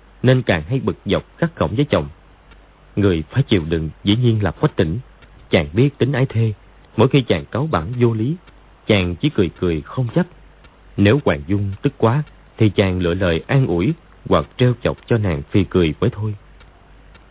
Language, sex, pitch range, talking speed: Vietnamese, male, 95-125 Hz, 195 wpm